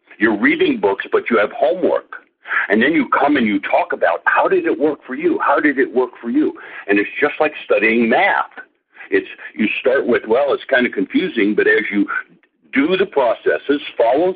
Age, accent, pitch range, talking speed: 60-79, American, 320-410 Hz, 205 wpm